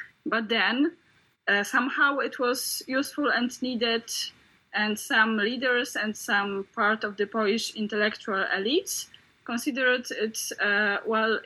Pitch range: 210-260 Hz